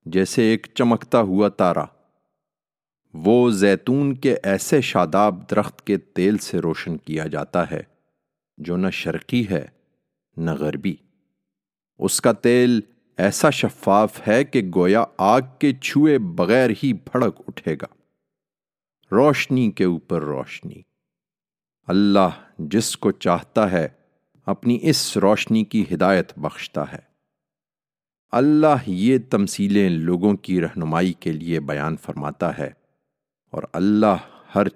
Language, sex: English, male